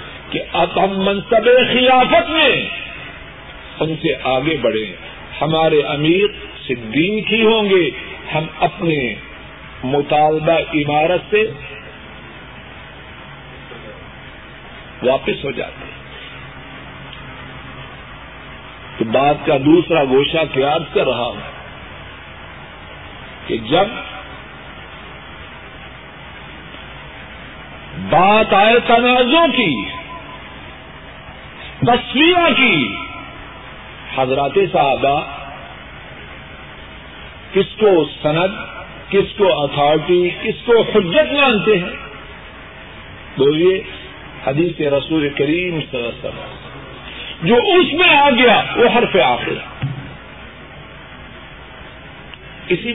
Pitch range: 150-235 Hz